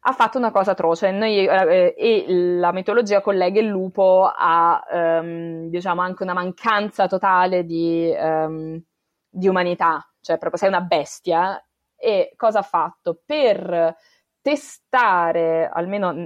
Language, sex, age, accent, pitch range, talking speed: Italian, female, 20-39, native, 175-225 Hz, 120 wpm